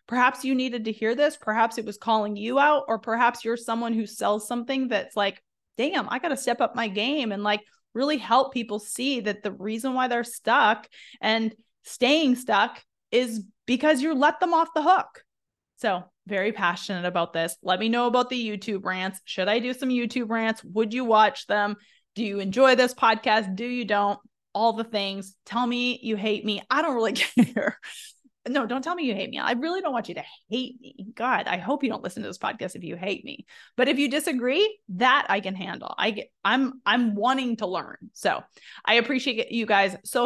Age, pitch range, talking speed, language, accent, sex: 20-39, 205-250 Hz, 215 wpm, English, American, female